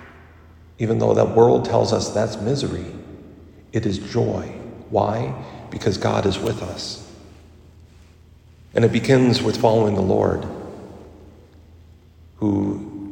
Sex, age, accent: male, 50-69, American